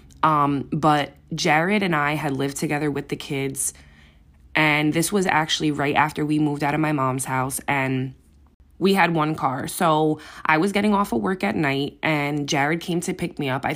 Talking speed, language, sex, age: 200 wpm, English, female, 20-39